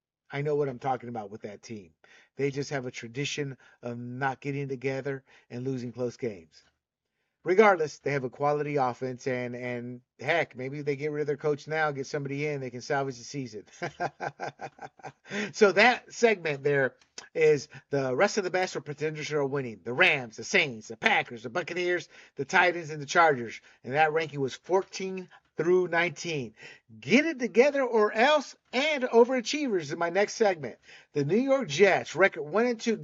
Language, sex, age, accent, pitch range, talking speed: English, male, 50-69, American, 130-185 Hz, 180 wpm